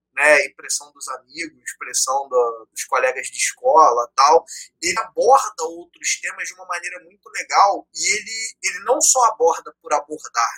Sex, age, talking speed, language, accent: male, 20-39, 160 wpm, Portuguese, Brazilian